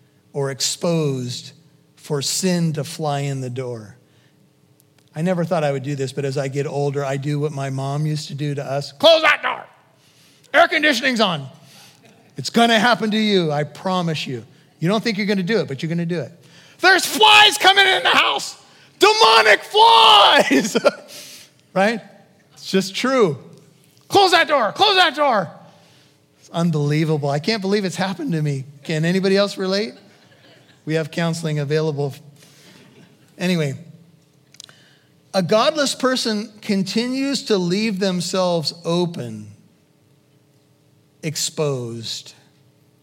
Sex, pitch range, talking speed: male, 140-195 Hz, 140 wpm